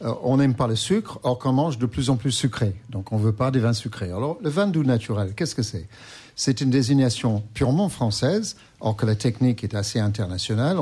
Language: French